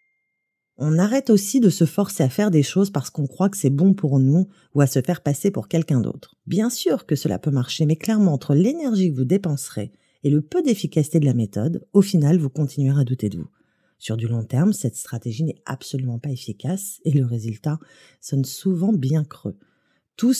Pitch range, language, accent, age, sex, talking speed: 135-200 Hz, French, French, 30-49, female, 210 wpm